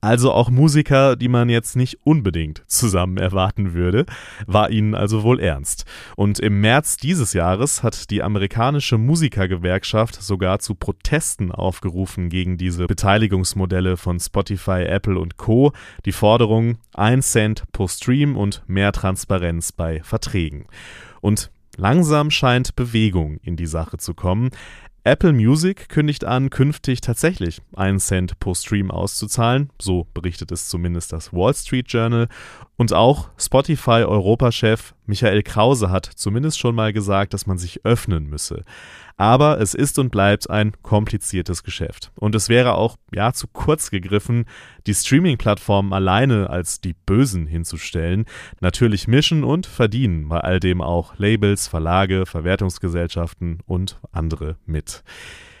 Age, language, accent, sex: 30-49, German, German, male